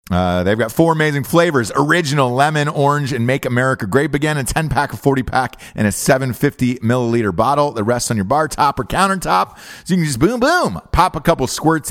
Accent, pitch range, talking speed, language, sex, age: American, 100-140 Hz, 215 wpm, English, male, 30-49